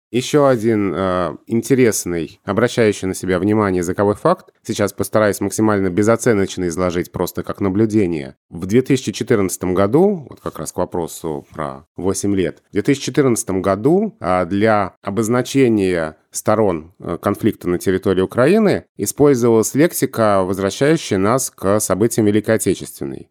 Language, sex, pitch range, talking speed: Russian, male, 90-115 Hz, 125 wpm